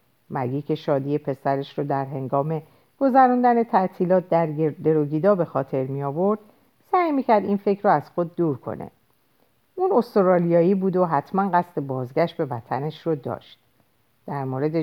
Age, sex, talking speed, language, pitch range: 50-69, female, 150 wpm, Persian, 140-210 Hz